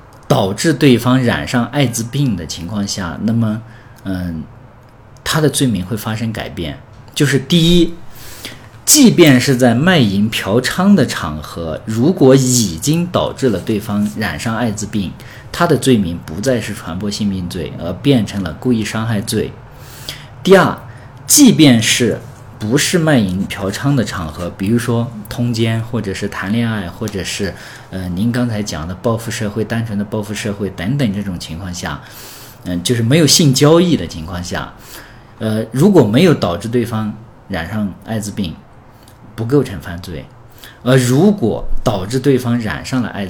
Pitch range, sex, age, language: 100-130 Hz, male, 50-69, Chinese